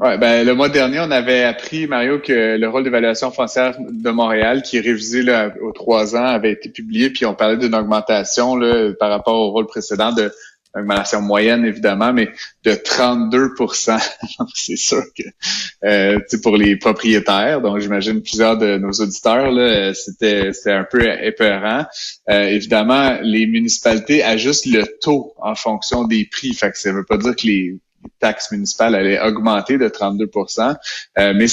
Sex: male